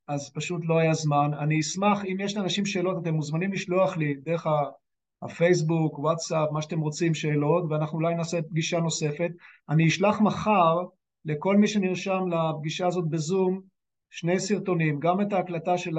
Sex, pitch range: male, 155-185 Hz